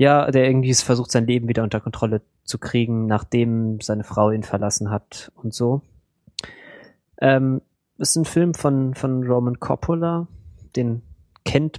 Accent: German